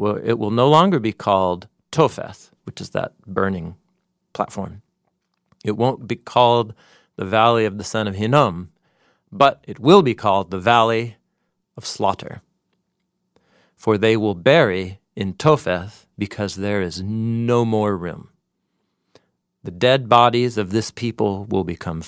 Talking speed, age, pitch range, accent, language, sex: 140 wpm, 40-59, 95-120 Hz, American, English, male